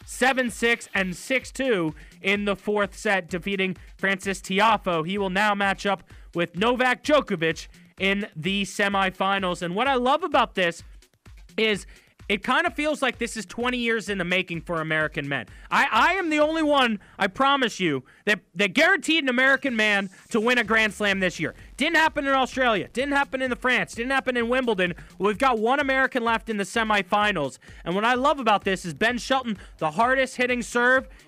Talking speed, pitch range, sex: 190 wpm, 195-245 Hz, male